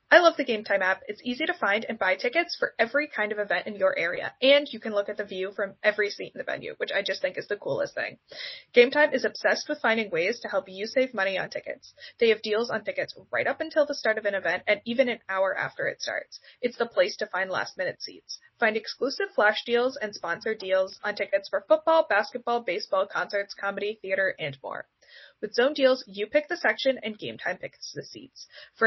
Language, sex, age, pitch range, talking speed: English, female, 10-29, 205-280 Hz, 235 wpm